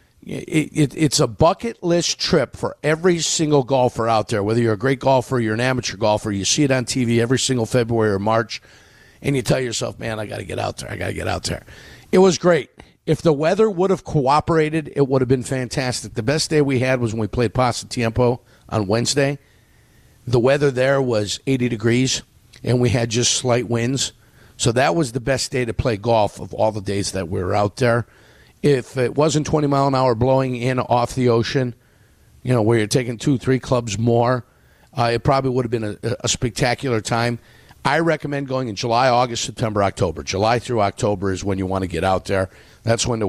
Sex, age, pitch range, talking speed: male, 50-69, 110-135 Hz, 215 wpm